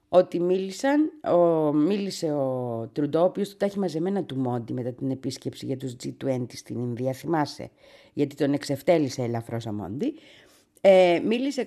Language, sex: Greek, female